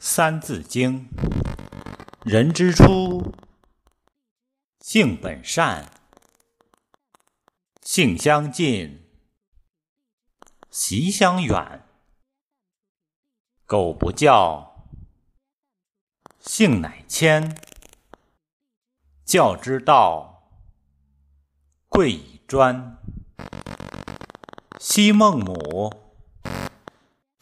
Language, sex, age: Chinese, male, 50-69